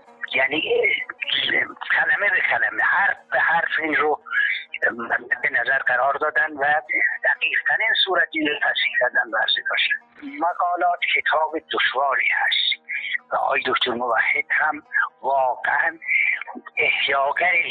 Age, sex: 60-79, male